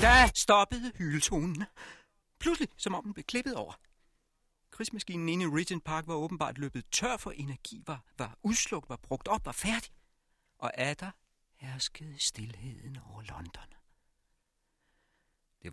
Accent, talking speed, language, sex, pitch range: native, 135 wpm, Danish, male, 105-140 Hz